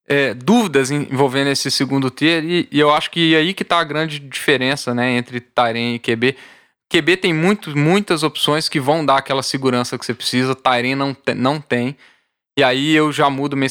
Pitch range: 130-155 Hz